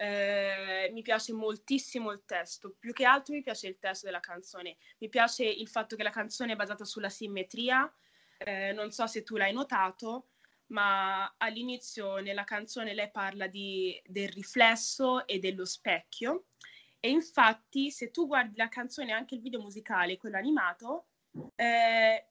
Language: Italian